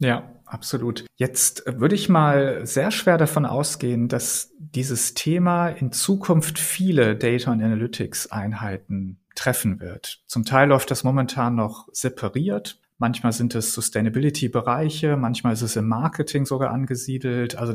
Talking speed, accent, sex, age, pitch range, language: 135 wpm, German, male, 40-59, 120-155 Hz, German